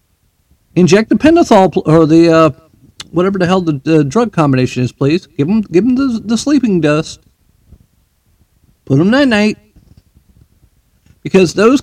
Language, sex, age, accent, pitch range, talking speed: English, male, 50-69, American, 100-165 Hz, 140 wpm